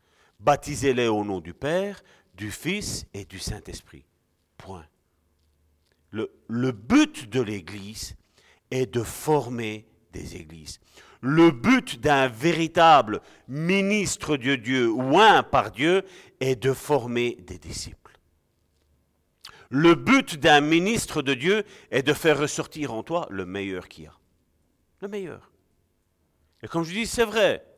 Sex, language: male, French